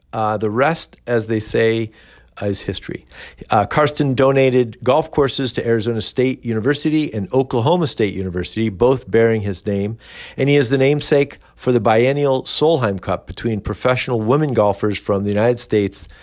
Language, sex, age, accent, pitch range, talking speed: English, male, 50-69, American, 105-140 Hz, 165 wpm